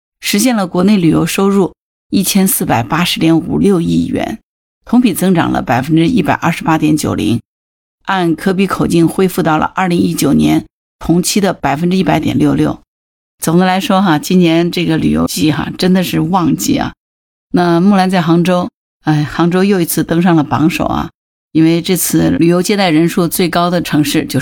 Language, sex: Chinese, female